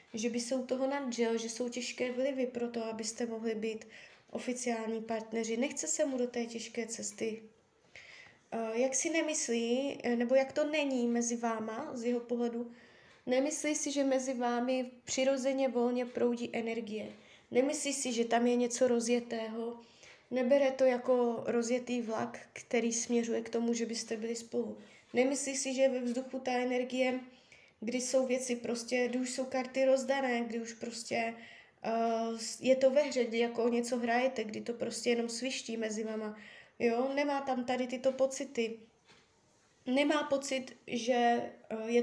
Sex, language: female, Czech